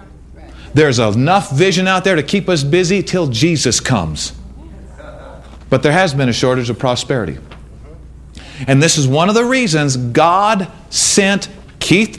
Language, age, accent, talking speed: English, 40-59, American, 150 wpm